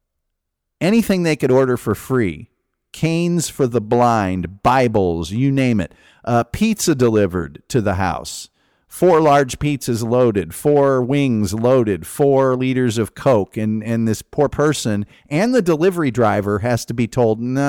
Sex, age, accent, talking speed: male, 50-69, American, 155 wpm